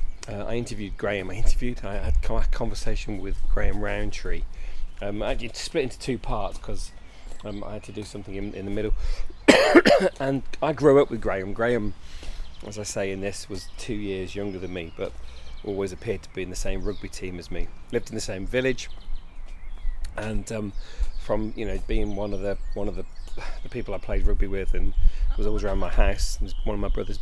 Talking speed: 205 wpm